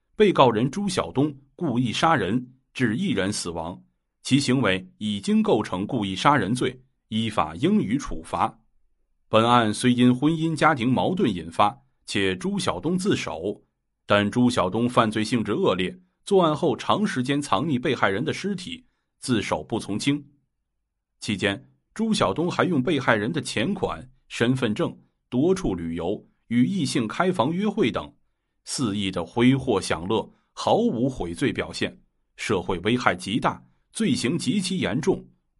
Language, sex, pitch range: Chinese, male, 105-145 Hz